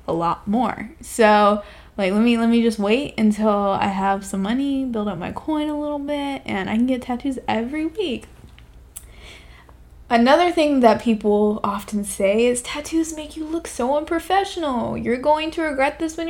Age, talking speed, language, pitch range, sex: 10-29, 180 wpm, English, 195-255 Hz, female